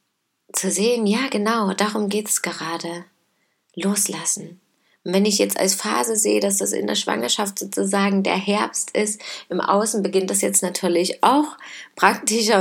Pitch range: 180-215 Hz